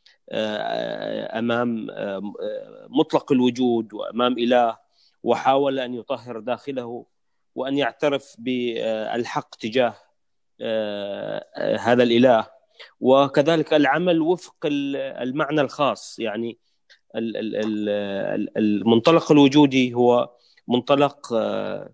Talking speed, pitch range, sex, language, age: 70 wpm, 115-140 Hz, male, Arabic, 30-49